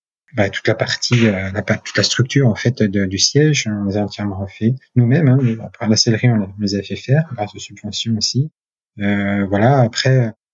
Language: French